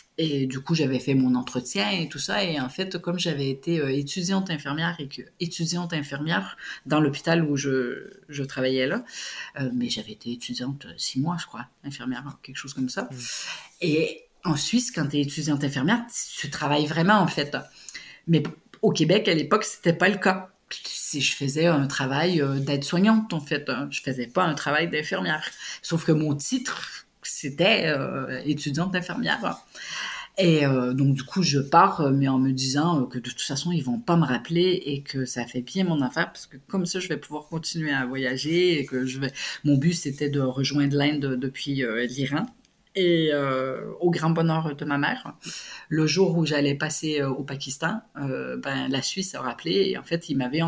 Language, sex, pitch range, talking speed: French, female, 135-170 Hz, 200 wpm